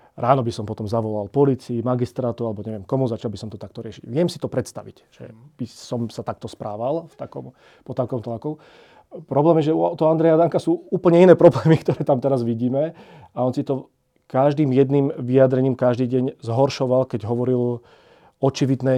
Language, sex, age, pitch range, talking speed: Slovak, male, 40-59, 120-145 Hz, 180 wpm